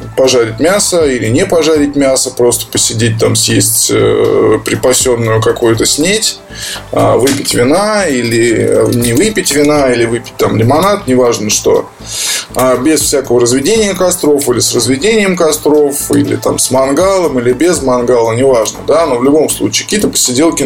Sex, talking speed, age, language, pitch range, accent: male, 140 wpm, 20-39, Russian, 115-145 Hz, native